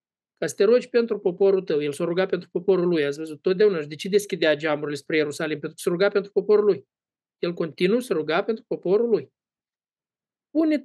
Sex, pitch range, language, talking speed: male, 160-220 Hz, Romanian, 175 wpm